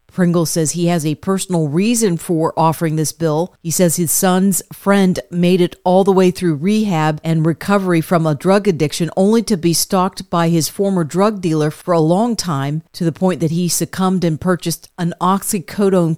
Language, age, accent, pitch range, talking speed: English, 40-59, American, 160-190 Hz, 195 wpm